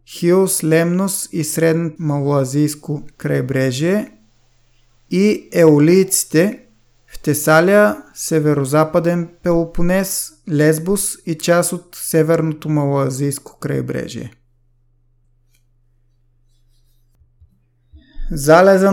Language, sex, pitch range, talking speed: Bulgarian, male, 130-165 Hz, 65 wpm